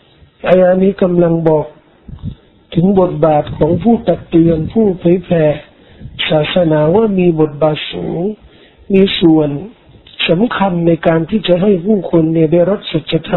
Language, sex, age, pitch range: Thai, male, 50-69, 160-190 Hz